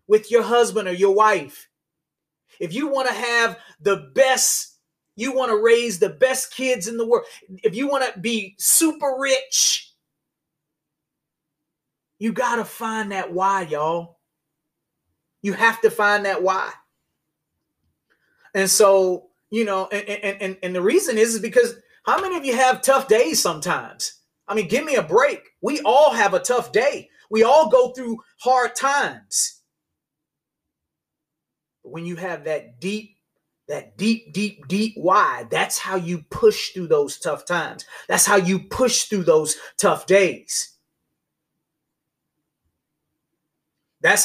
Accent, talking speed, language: American, 140 wpm, English